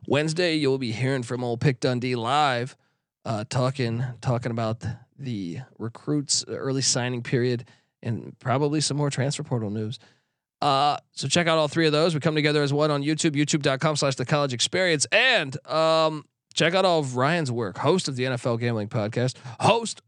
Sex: male